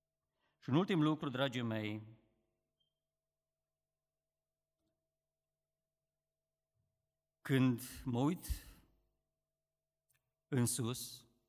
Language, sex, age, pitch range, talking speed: Romanian, male, 50-69, 115-160 Hz, 55 wpm